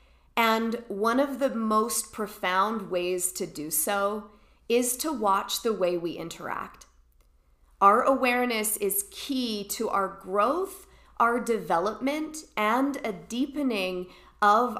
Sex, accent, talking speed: female, American, 120 wpm